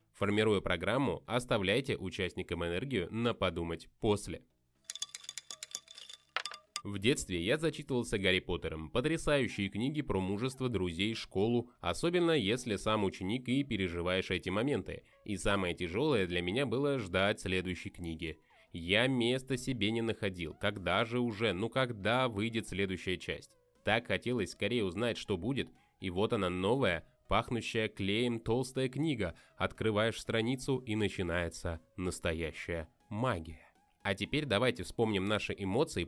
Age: 20-39